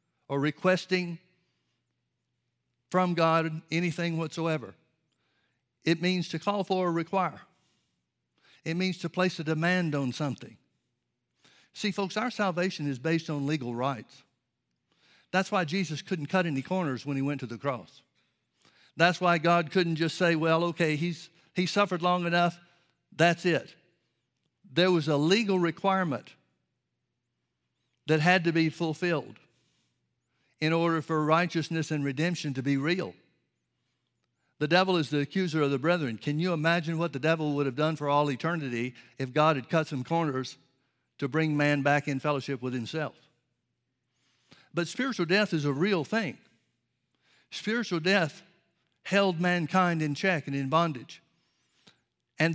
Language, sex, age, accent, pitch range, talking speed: English, male, 60-79, American, 140-180 Hz, 145 wpm